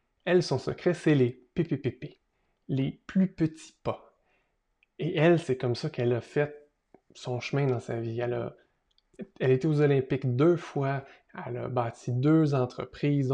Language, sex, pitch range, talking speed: French, male, 125-155 Hz, 160 wpm